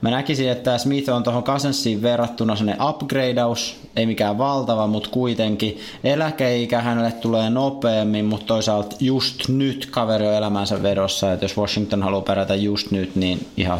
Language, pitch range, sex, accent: Finnish, 105-120 Hz, male, native